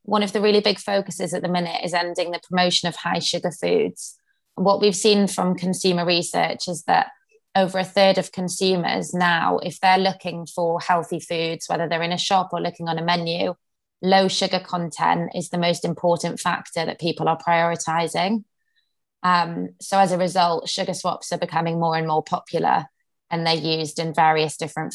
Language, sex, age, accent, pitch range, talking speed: English, female, 20-39, British, 160-185 Hz, 190 wpm